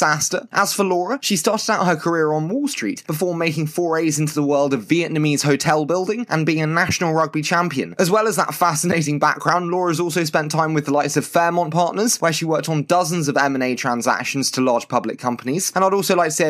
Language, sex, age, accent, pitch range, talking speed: English, male, 20-39, British, 140-180 Hz, 225 wpm